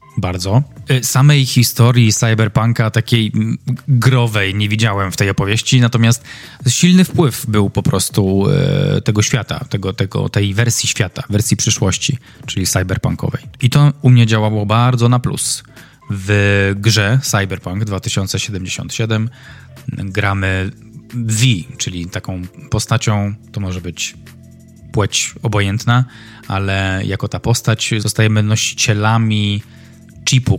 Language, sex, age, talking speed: Polish, male, 20-39, 110 wpm